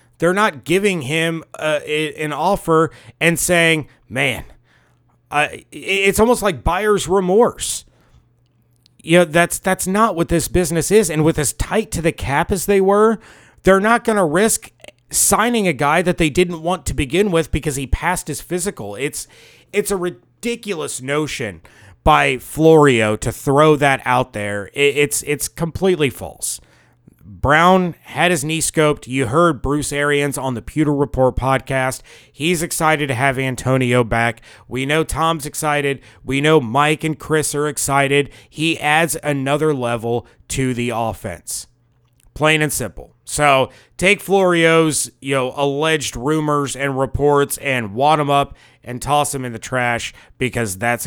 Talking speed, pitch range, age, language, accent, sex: 155 wpm, 125-170 Hz, 30-49, English, American, male